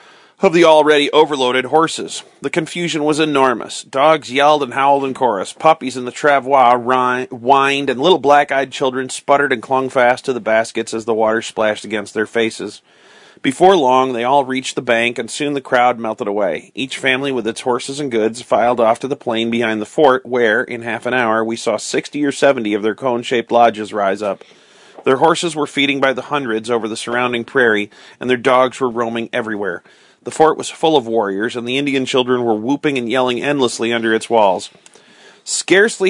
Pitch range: 120-150 Hz